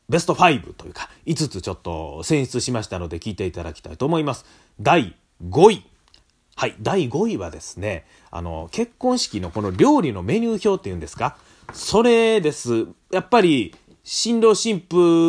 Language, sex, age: Japanese, male, 30-49